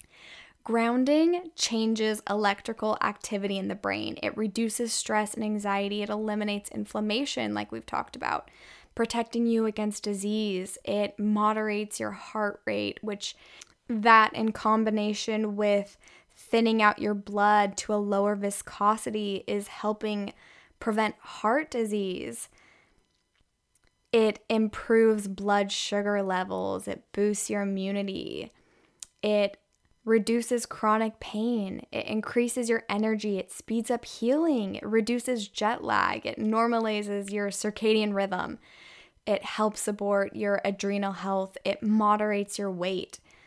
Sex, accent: female, American